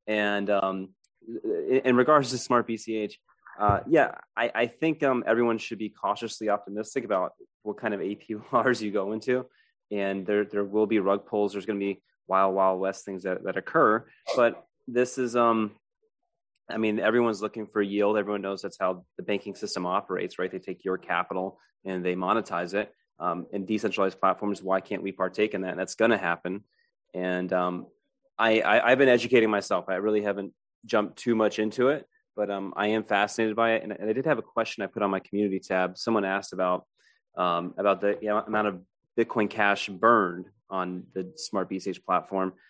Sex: male